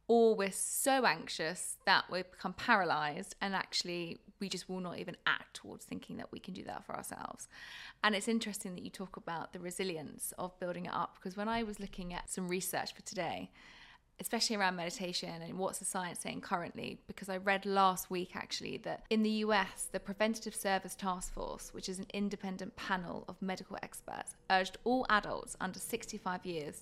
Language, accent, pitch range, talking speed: English, British, 185-220 Hz, 190 wpm